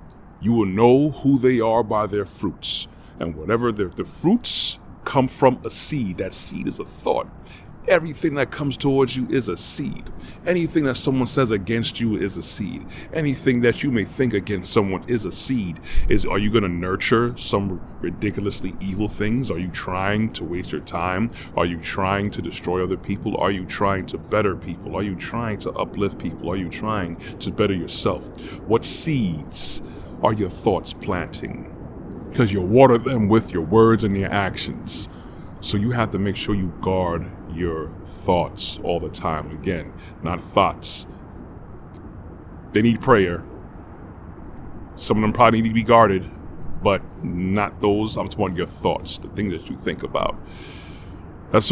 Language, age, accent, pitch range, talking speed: English, 30-49, American, 90-115 Hz, 170 wpm